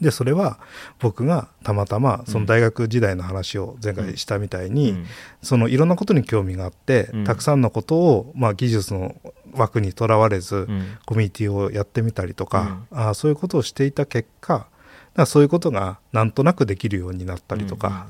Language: Japanese